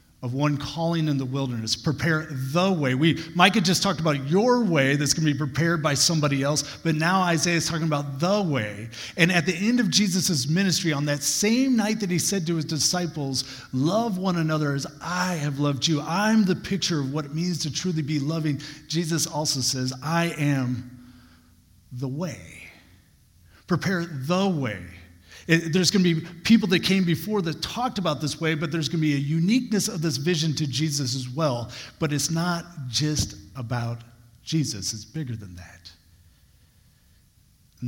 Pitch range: 125-170 Hz